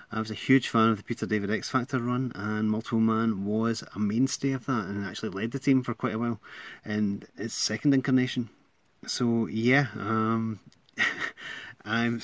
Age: 30-49